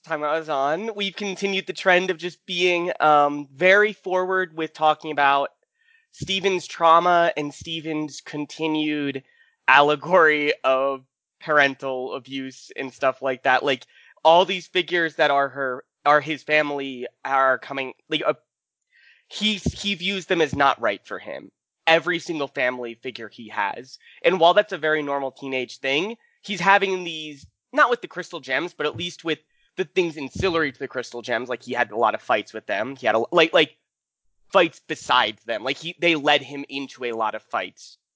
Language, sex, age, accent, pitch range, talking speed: English, male, 20-39, American, 140-180 Hz, 180 wpm